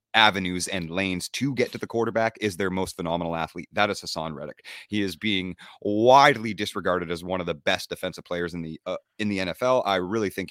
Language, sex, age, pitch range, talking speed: English, male, 30-49, 85-105 Hz, 215 wpm